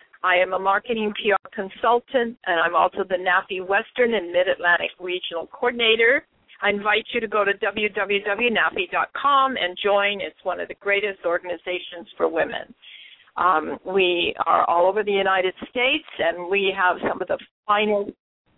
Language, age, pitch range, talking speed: English, 50-69, 180-235 Hz, 155 wpm